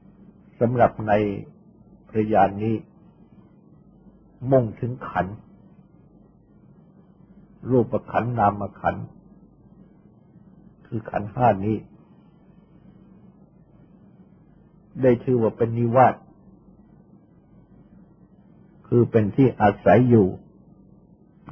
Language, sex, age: Thai, male, 60-79